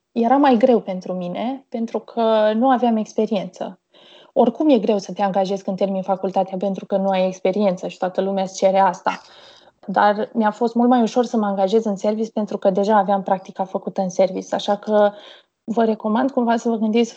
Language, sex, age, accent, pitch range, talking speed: Romanian, female, 20-39, native, 195-230 Hz, 200 wpm